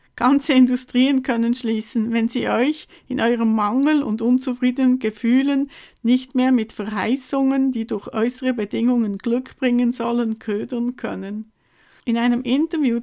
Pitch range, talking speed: 220-255 Hz, 135 wpm